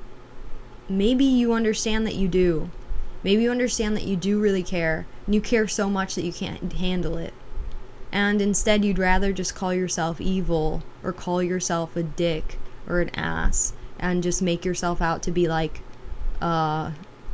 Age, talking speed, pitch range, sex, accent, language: 20-39, 170 wpm, 160-205 Hz, female, American, English